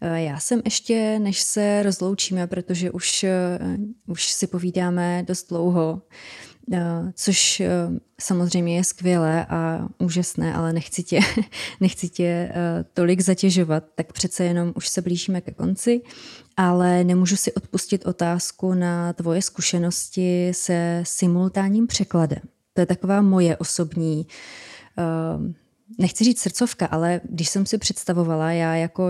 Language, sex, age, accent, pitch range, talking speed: Czech, female, 20-39, native, 175-195 Hz, 120 wpm